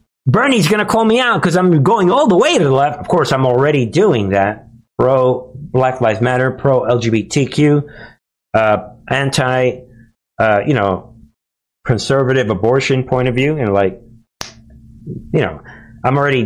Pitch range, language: 115-150 Hz, English